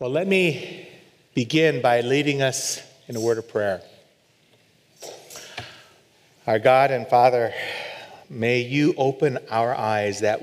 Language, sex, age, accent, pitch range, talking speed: English, male, 30-49, American, 115-145 Hz, 125 wpm